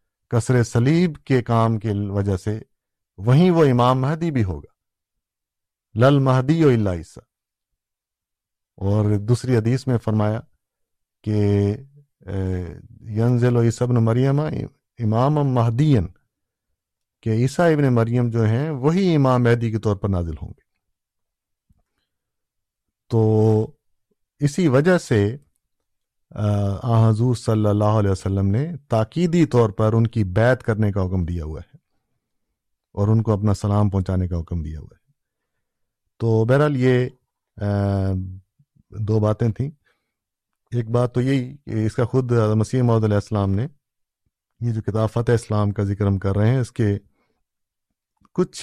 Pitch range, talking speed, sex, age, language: 100-125 Hz, 130 wpm, male, 50-69, Urdu